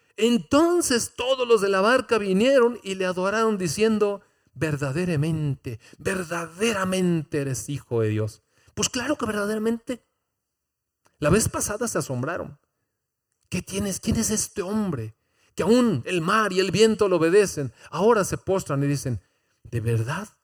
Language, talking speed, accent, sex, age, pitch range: Spanish, 140 wpm, Mexican, male, 40-59, 135-215 Hz